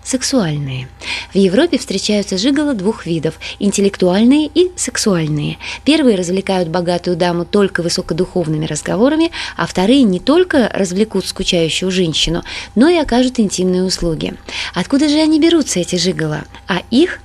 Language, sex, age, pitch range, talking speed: Russian, female, 20-39, 180-260 Hz, 130 wpm